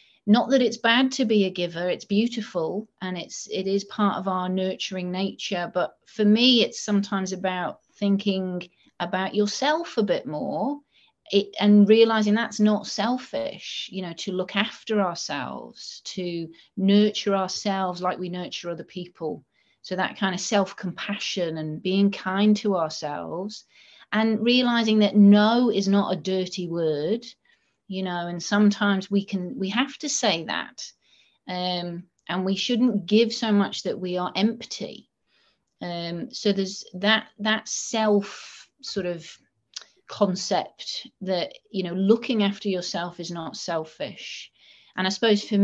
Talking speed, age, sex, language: 150 wpm, 30-49, female, English